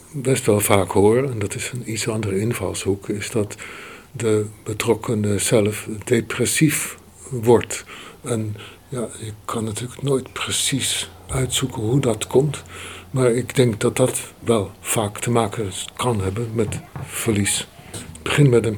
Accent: Dutch